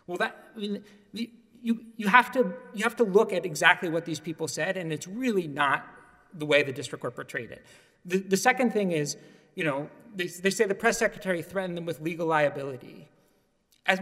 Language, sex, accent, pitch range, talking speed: English, male, American, 185-240 Hz, 205 wpm